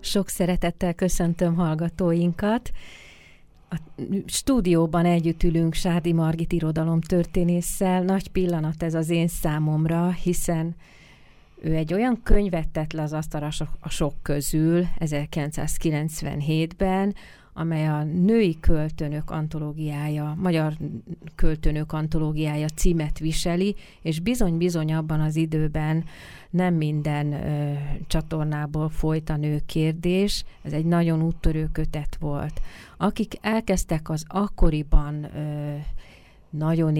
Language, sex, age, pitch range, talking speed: Hungarian, female, 30-49, 155-175 Hz, 100 wpm